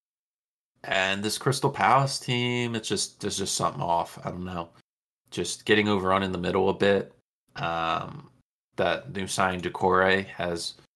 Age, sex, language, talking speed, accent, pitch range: 20-39, male, English, 155 wpm, American, 90-100 Hz